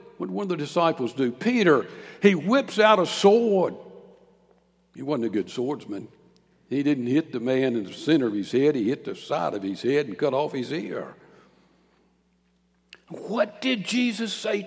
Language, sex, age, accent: English, male, 60-79, American